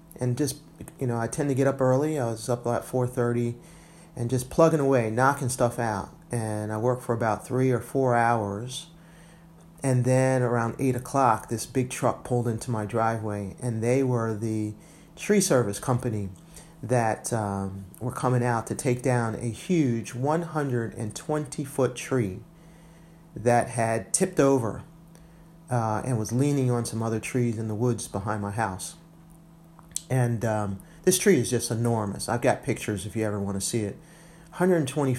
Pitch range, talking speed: 110-145 Hz, 165 wpm